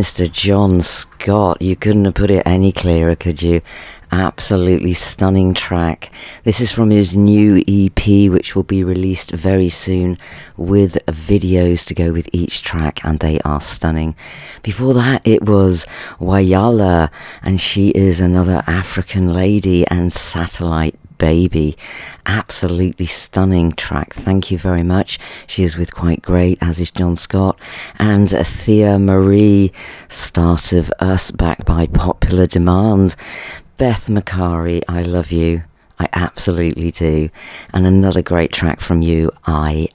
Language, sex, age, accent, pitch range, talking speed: English, female, 40-59, British, 85-100 Hz, 140 wpm